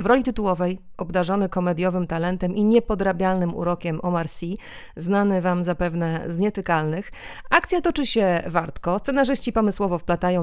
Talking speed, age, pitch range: 130 wpm, 30-49, 175-210 Hz